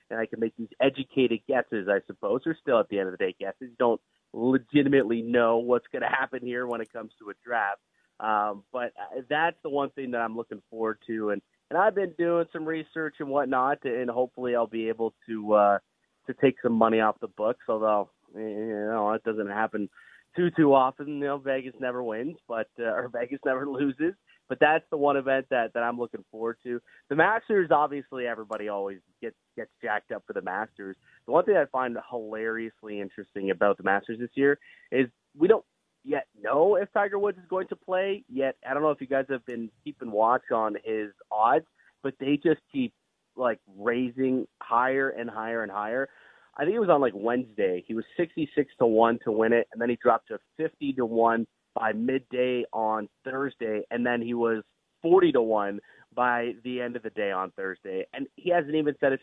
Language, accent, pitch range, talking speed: English, American, 110-140 Hz, 210 wpm